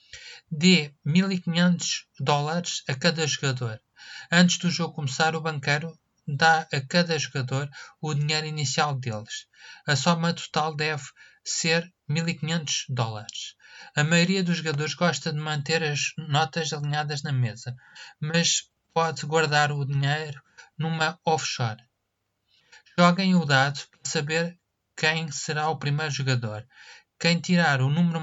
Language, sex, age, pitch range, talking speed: Portuguese, male, 20-39, 140-170 Hz, 130 wpm